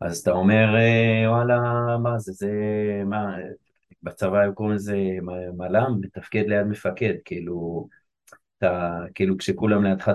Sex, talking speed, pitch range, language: male, 110 wpm, 90-110 Hz, Hebrew